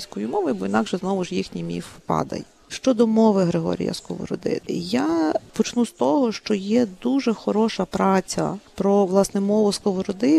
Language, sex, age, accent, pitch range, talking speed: Ukrainian, female, 40-59, native, 185-235 Hz, 145 wpm